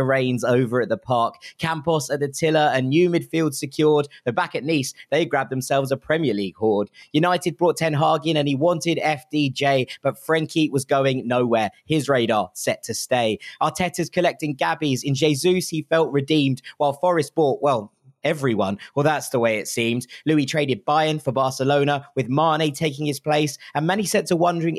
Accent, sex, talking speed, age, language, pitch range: British, male, 185 wpm, 20-39, English, 135-160 Hz